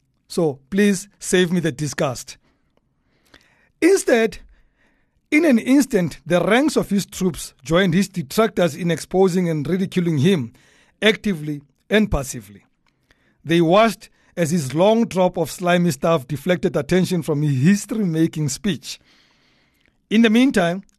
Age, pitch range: 60-79, 155-205 Hz